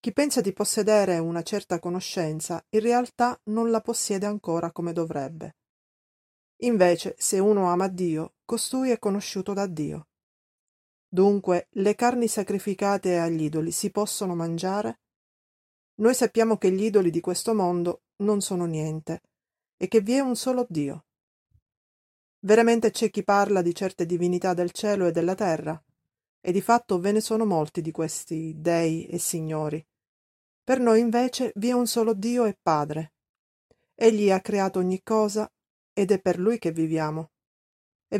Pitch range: 170-220 Hz